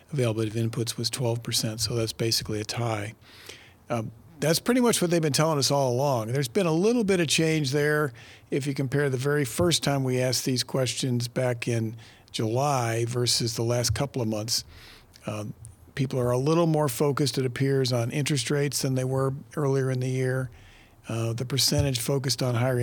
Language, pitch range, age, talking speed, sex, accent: English, 115-145 Hz, 50-69, 195 wpm, male, American